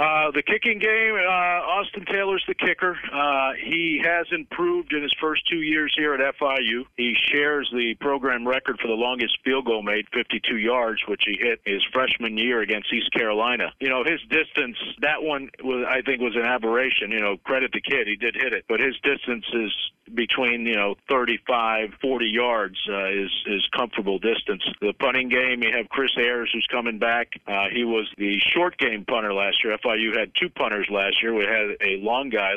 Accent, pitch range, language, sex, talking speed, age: American, 110-145 Hz, English, male, 205 wpm, 50-69